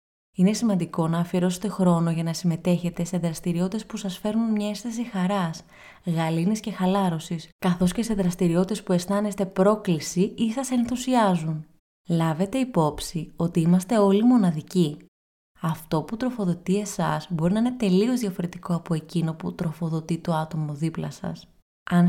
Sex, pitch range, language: female, 165-200 Hz, Greek